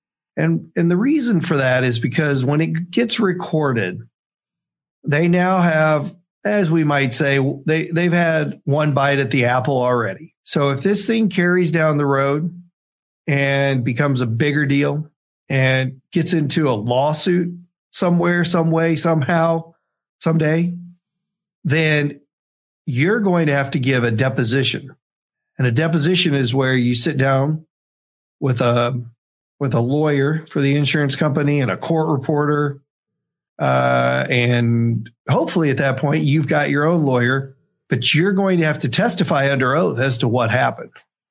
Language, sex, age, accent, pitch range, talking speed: English, male, 40-59, American, 135-170 Hz, 155 wpm